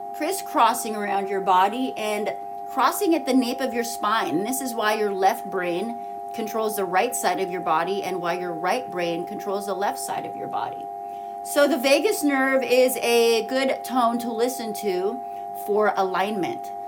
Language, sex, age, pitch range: English, female, 30-49, 170-260 Hz